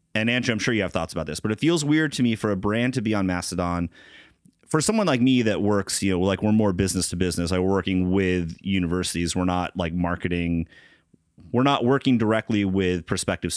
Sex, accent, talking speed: male, American, 220 wpm